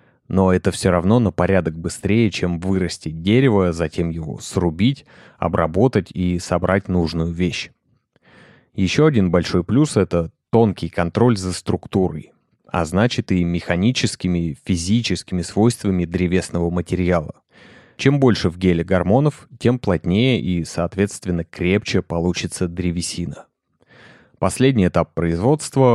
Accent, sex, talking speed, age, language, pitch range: native, male, 120 wpm, 30-49, Russian, 85-105 Hz